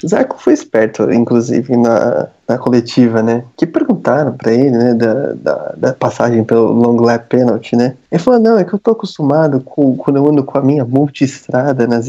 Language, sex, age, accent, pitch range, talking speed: Portuguese, male, 20-39, Brazilian, 130-200 Hz, 200 wpm